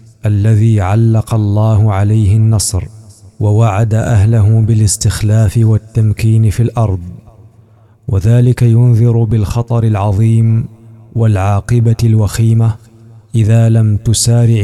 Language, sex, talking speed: Arabic, male, 80 wpm